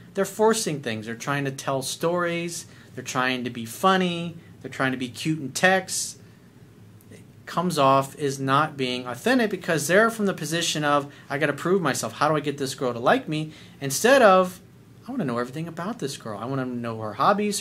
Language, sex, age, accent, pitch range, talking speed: English, male, 30-49, American, 125-170 Hz, 210 wpm